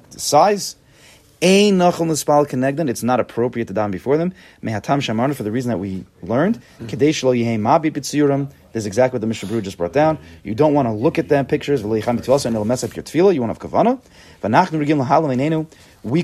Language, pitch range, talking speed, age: English, 115-155 Hz, 145 wpm, 30-49